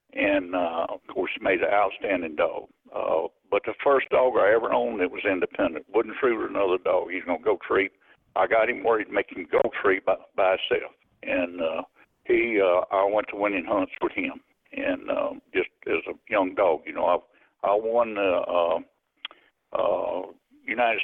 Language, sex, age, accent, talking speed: English, male, 60-79, American, 195 wpm